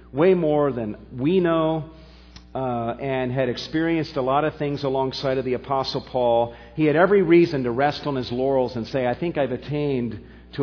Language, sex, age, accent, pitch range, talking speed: English, male, 50-69, American, 95-135 Hz, 190 wpm